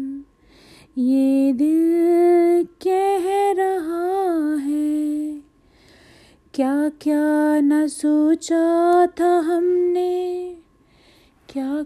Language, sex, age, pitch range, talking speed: Hindi, female, 30-49, 285-340 Hz, 60 wpm